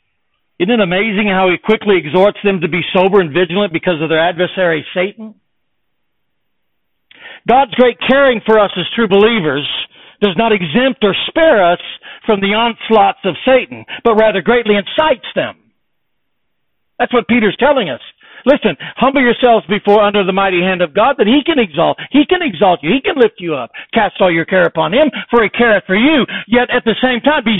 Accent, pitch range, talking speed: American, 160-245 Hz, 190 wpm